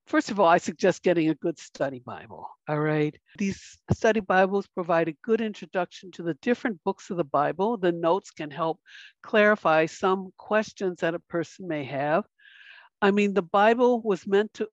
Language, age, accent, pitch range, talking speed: English, 60-79, American, 170-225 Hz, 185 wpm